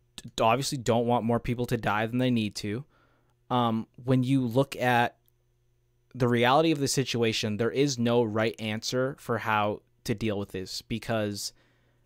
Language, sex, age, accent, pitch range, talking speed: English, male, 20-39, American, 115-135 Hz, 165 wpm